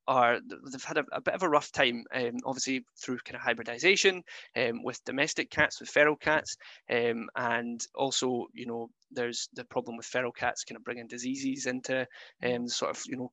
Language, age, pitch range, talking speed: English, 20-39, 120-140 Hz, 210 wpm